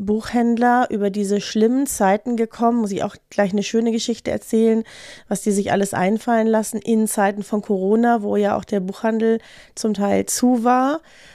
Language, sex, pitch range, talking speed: German, female, 205-235 Hz, 175 wpm